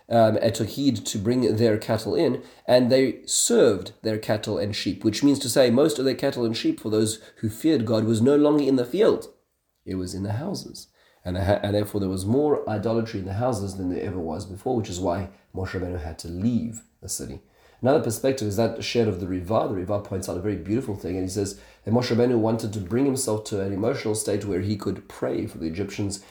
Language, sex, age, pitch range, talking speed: English, male, 30-49, 100-115 Hz, 235 wpm